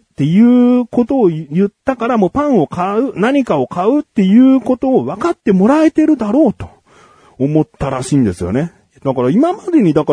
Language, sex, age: Japanese, male, 40-59